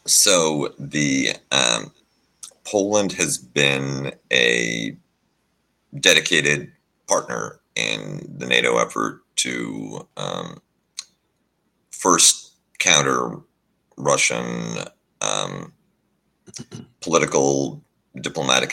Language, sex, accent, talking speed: English, male, American, 65 wpm